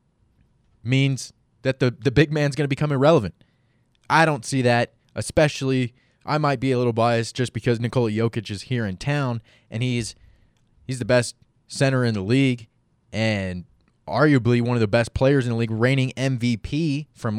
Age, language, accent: 20-39, English, American